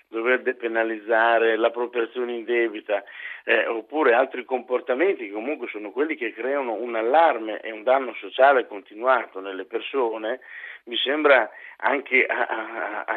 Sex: male